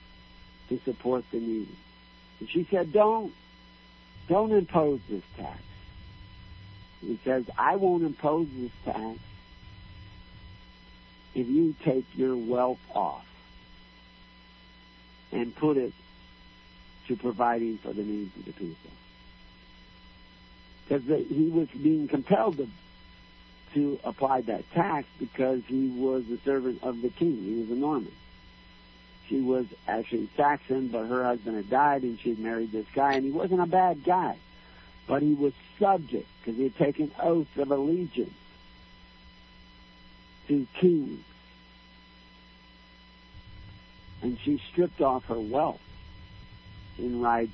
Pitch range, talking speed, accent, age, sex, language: 90-130 Hz, 125 wpm, American, 60-79, male, English